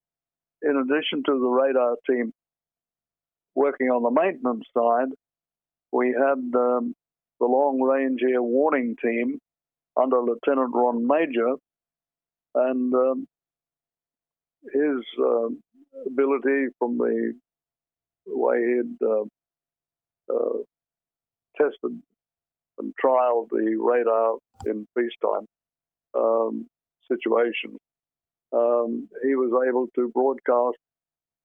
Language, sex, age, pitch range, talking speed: English, male, 50-69, 115-135 Hz, 95 wpm